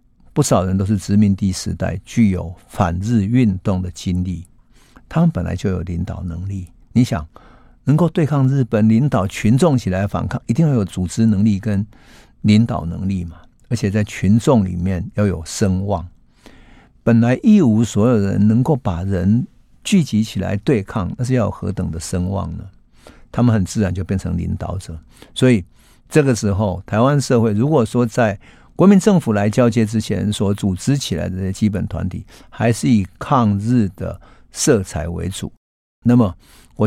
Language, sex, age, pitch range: Chinese, male, 50-69, 95-120 Hz